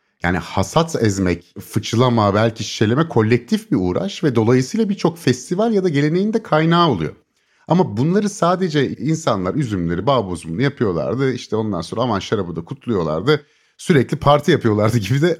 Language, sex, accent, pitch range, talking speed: Turkish, male, native, 115-165 Hz, 150 wpm